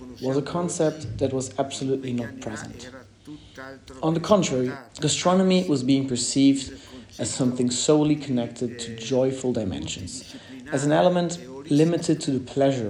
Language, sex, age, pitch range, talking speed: English, male, 30-49, 125-150 Hz, 135 wpm